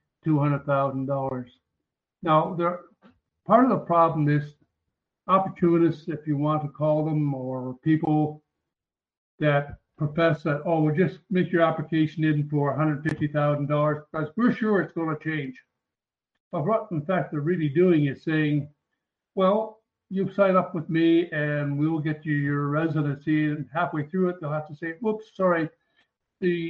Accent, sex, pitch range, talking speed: American, male, 145-165 Hz, 150 wpm